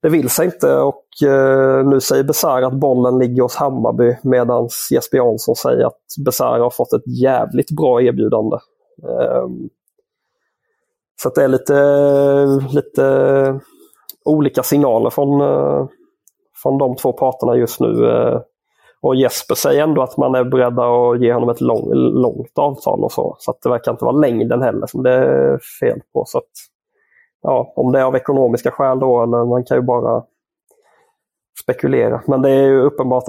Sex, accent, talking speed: male, Swedish, 170 wpm